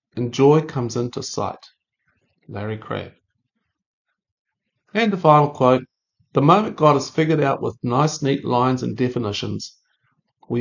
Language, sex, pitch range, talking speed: English, male, 110-150 Hz, 135 wpm